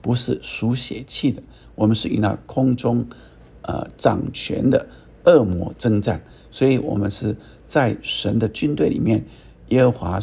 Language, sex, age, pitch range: Chinese, male, 50-69, 100-125 Hz